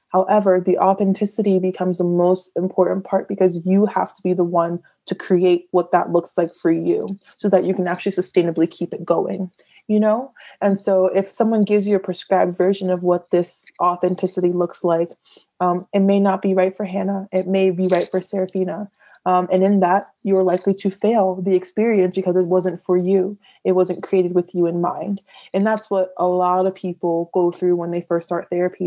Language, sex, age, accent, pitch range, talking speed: English, female, 20-39, American, 175-195 Hz, 205 wpm